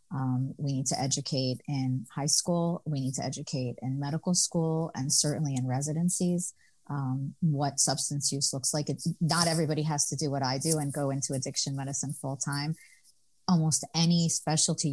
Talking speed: 175 wpm